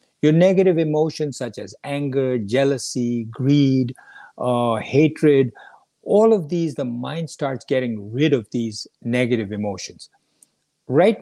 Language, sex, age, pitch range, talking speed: English, male, 50-69, 120-160 Hz, 125 wpm